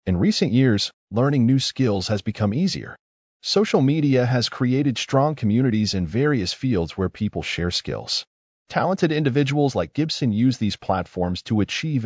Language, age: Japanese, 40-59